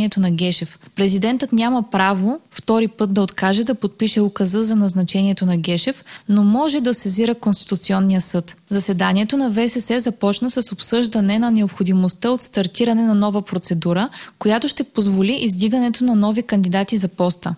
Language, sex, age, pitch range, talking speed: Bulgarian, female, 20-39, 190-230 Hz, 150 wpm